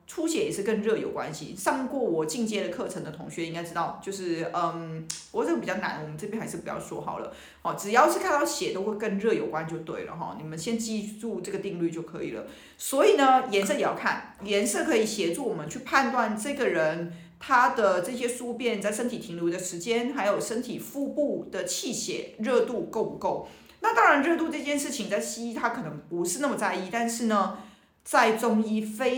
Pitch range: 180-235 Hz